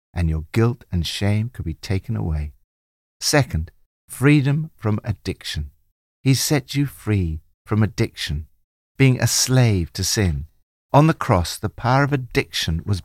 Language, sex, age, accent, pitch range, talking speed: English, male, 60-79, British, 85-125 Hz, 145 wpm